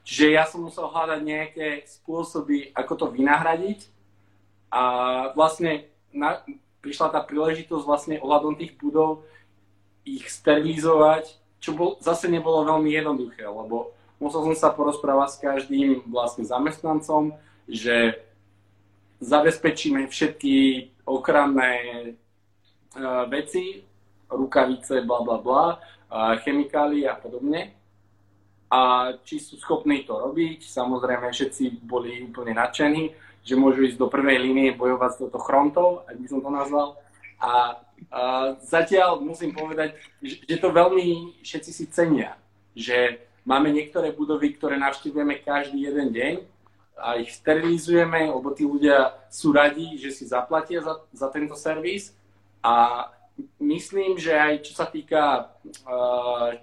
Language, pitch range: Slovak, 120-155 Hz